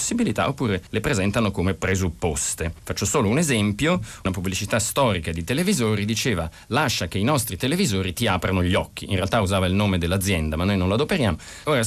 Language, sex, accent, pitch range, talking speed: Italian, male, native, 95-145 Hz, 180 wpm